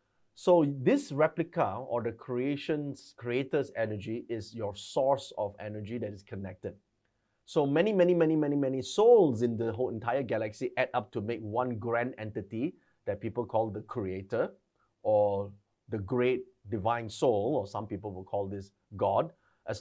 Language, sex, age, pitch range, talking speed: English, male, 30-49, 110-145 Hz, 160 wpm